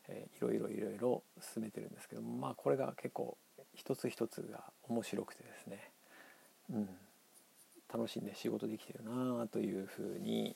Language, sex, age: Japanese, male, 50-69